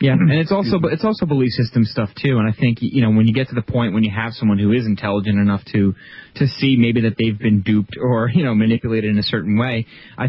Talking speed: 270 wpm